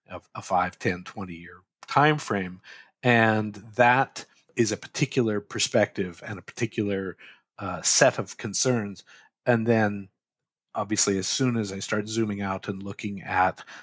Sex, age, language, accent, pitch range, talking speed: male, 50-69, English, American, 100-120 Hz, 145 wpm